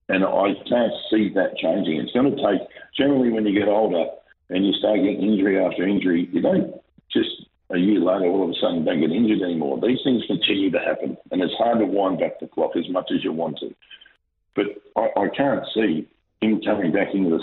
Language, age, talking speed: English, 50-69, 225 wpm